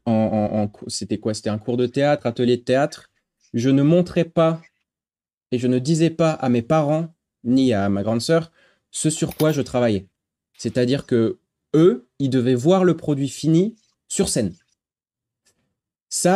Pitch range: 105-145 Hz